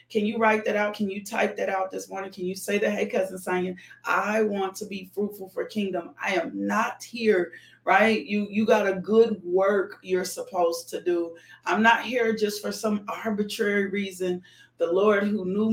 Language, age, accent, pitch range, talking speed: English, 40-59, American, 185-215 Hz, 200 wpm